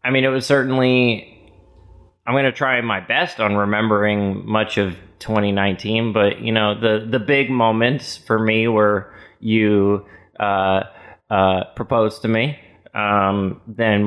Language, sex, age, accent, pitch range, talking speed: English, male, 20-39, American, 100-115 Hz, 145 wpm